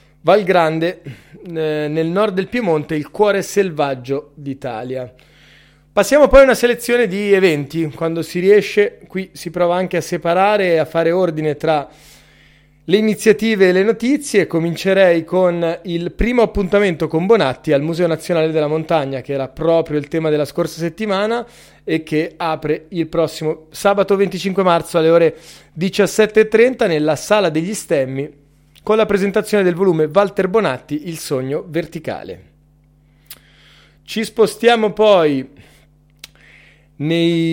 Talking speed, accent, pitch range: 135 wpm, native, 150-200 Hz